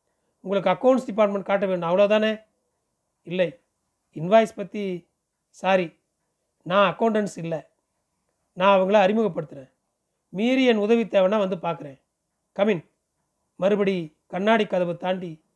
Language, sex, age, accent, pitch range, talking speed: Tamil, male, 30-49, native, 170-215 Hz, 100 wpm